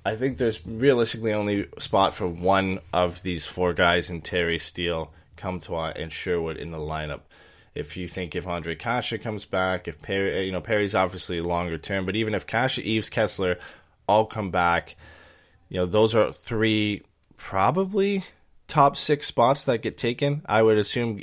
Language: English